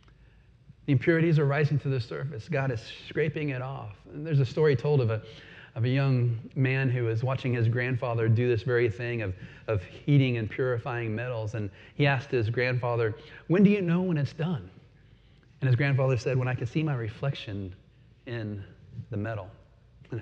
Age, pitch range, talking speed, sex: 30-49, 115-150 Hz, 185 wpm, male